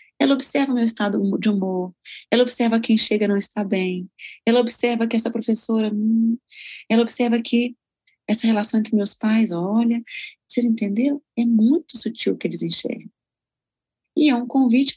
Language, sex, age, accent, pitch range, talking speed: Portuguese, female, 40-59, Brazilian, 200-255 Hz, 170 wpm